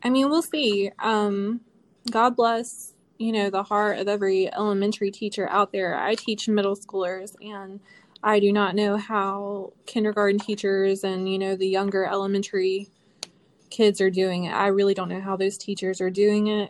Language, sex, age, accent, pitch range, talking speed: English, female, 20-39, American, 195-215 Hz, 175 wpm